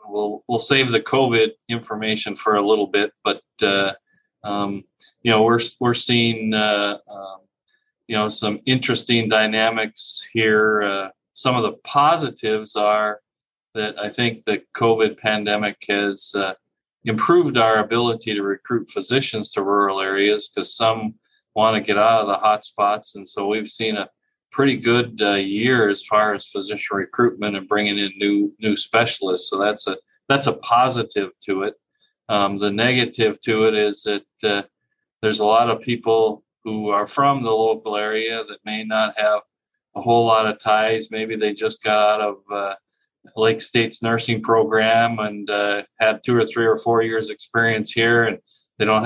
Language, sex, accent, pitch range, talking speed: English, male, American, 105-115 Hz, 170 wpm